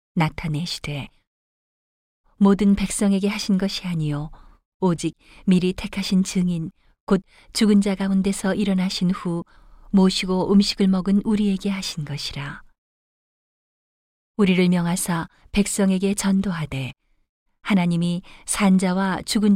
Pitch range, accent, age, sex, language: 160-200 Hz, native, 40-59, female, Korean